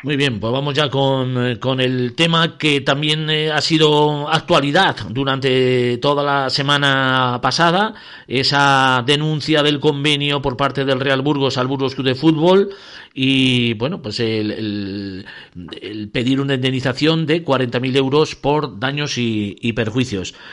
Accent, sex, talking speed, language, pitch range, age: Spanish, male, 150 wpm, Spanish, 125-150 Hz, 50-69